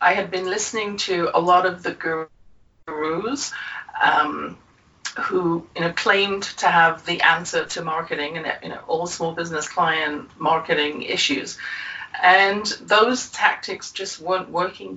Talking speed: 150 wpm